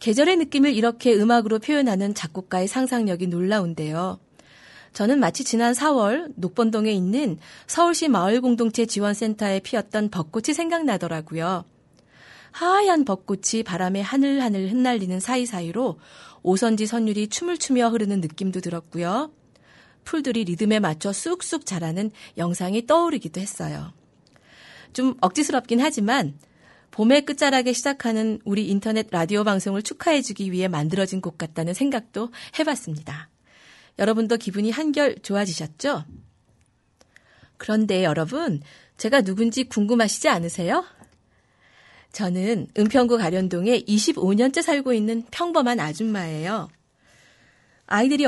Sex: female